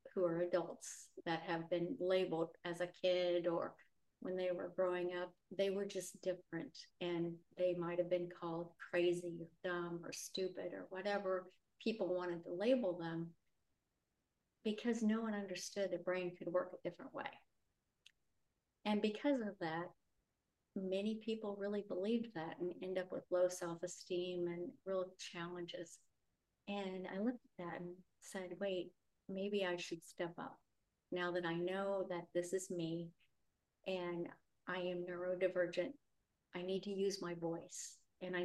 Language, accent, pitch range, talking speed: English, American, 175-200 Hz, 155 wpm